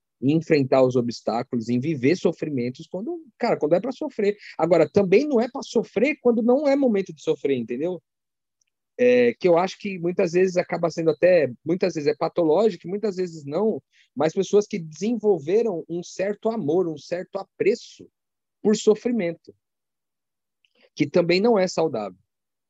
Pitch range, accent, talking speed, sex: 135-205 Hz, Brazilian, 155 wpm, male